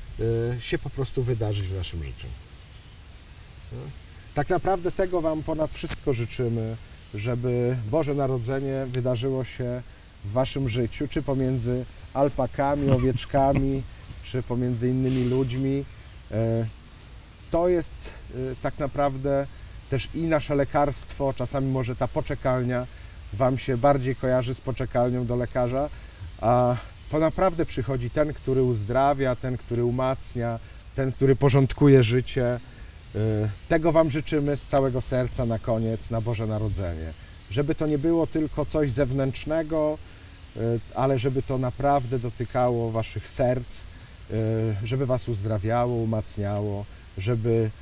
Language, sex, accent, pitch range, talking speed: Polish, male, native, 110-140 Hz, 120 wpm